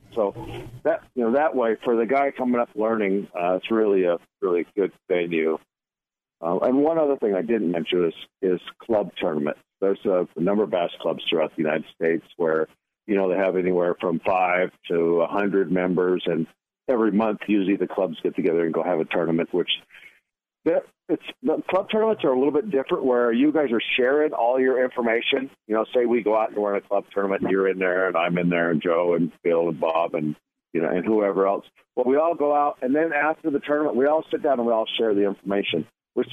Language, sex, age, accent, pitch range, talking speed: English, male, 50-69, American, 90-130 Hz, 230 wpm